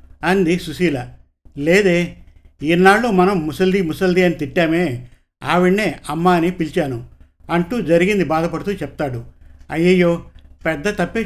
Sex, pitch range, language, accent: male, 150-185 Hz, Telugu, native